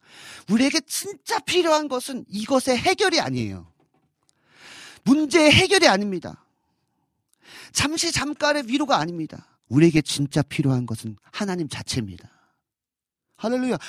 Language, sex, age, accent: Korean, male, 40-59, native